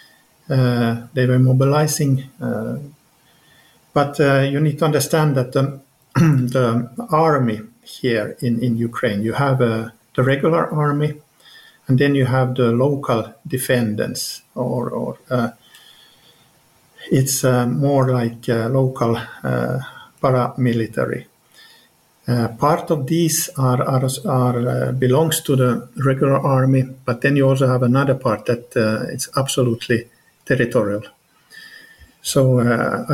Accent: Finnish